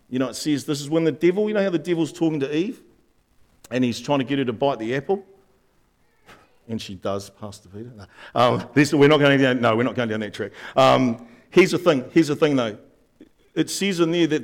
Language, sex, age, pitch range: English, male, 50-69, 125-190 Hz